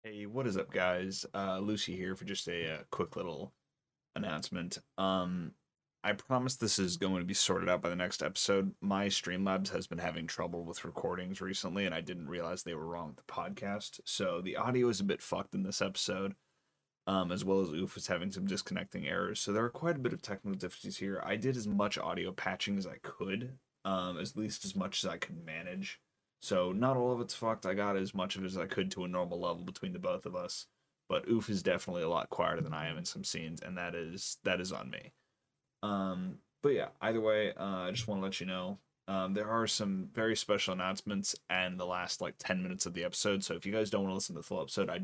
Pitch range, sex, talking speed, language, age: 90-110 Hz, male, 240 wpm, English, 30-49